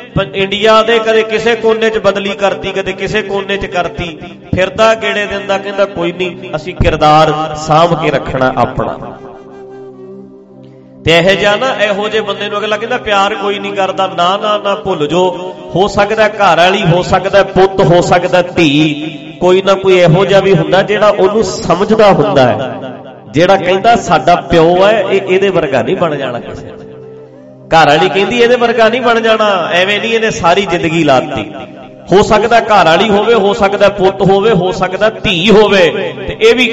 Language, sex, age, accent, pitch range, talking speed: English, male, 40-59, Indian, 170-215 Hz, 125 wpm